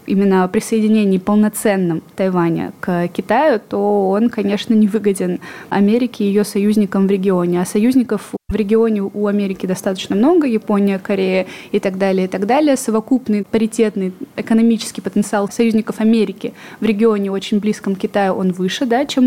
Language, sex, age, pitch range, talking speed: Russian, female, 20-39, 195-225 Hz, 155 wpm